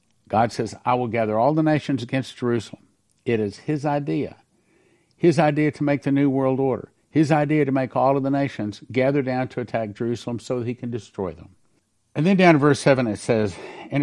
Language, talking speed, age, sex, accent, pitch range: English, 215 wpm, 50-69, male, American, 100-130 Hz